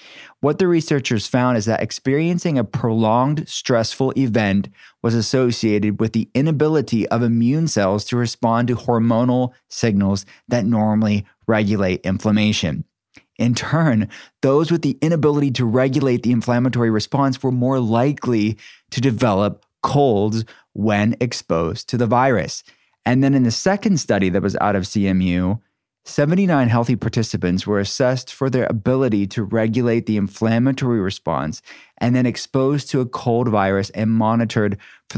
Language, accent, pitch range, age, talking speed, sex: English, American, 105-130 Hz, 30-49, 145 wpm, male